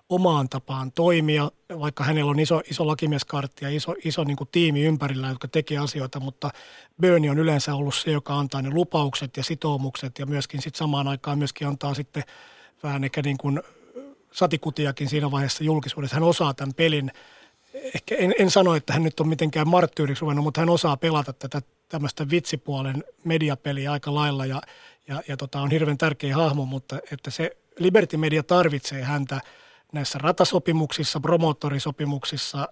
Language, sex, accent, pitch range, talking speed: Finnish, male, native, 140-165 Hz, 160 wpm